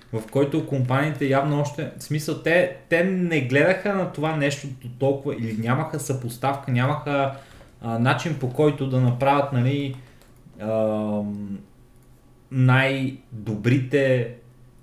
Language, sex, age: Bulgarian, male, 20-39